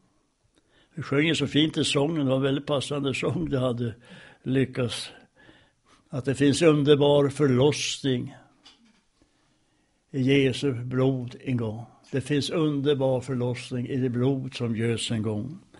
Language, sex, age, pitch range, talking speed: Swedish, male, 60-79, 130-170 Hz, 135 wpm